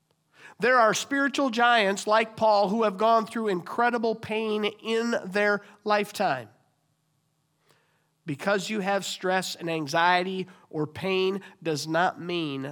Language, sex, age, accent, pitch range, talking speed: English, male, 50-69, American, 190-260 Hz, 125 wpm